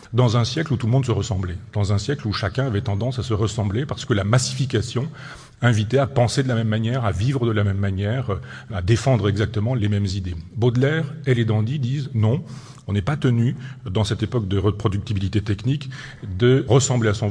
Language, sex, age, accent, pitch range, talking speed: French, male, 40-59, French, 105-130 Hz, 220 wpm